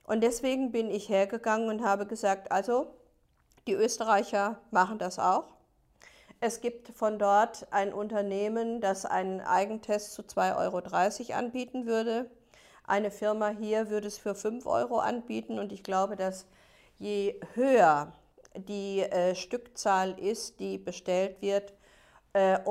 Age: 50-69